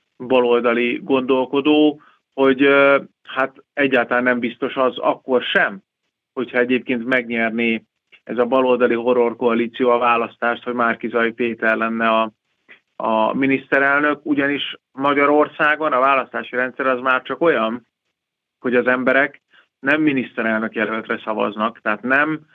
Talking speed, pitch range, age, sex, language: 120 wpm, 115-140 Hz, 30-49, male, Hungarian